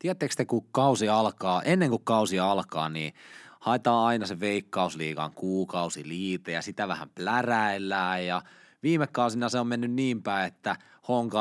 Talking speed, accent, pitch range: 155 wpm, native, 95-120 Hz